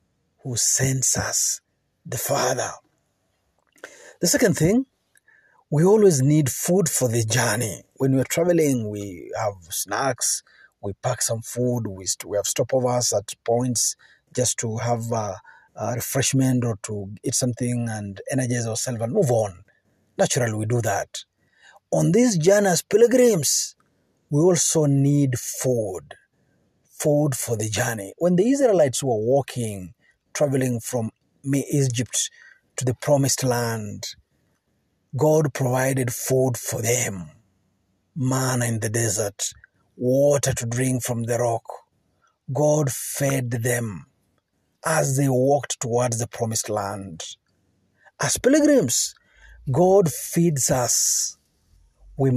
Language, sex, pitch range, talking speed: Swahili, male, 115-145 Hz, 120 wpm